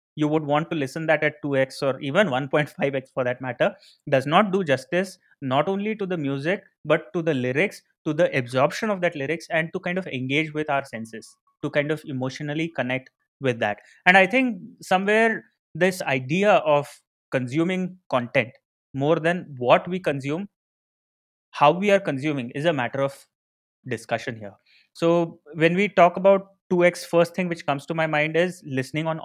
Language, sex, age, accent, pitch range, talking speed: English, male, 30-49, Indian, 140-180 Hz, 180 wpm